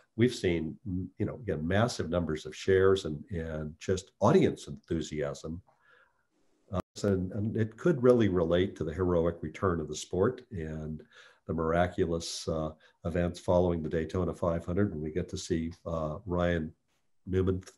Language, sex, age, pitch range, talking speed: English, male, 50-69, 80-105 Hz, 150 wpm